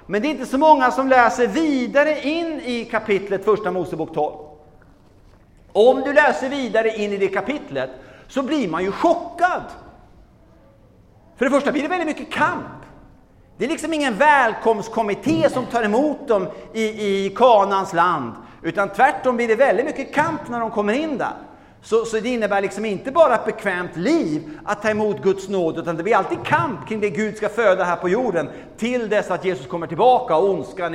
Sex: male